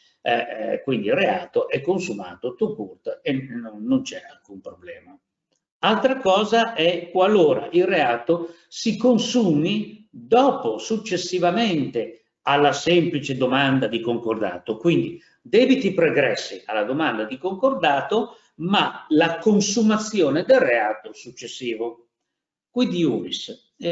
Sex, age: male, 50-69